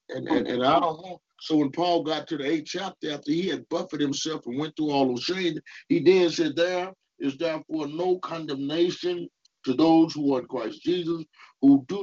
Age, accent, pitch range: 50-69, American, 145-235 Hz